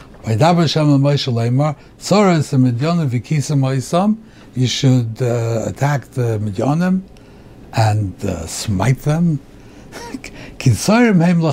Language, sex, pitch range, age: English, male, 120-155 Hz, 60-79